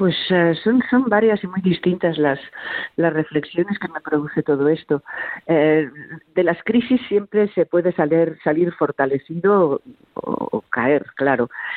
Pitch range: 140-175 Hz